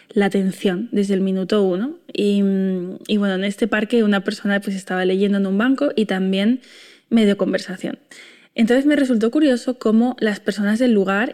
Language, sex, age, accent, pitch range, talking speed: Spanish, female, 20-39, Spanish, 195-230 Hz, 180 wpm